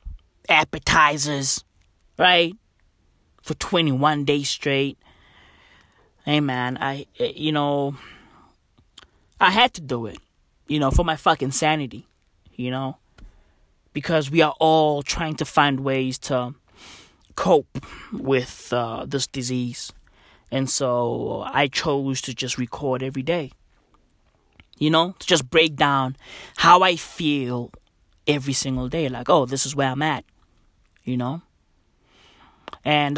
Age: 20-39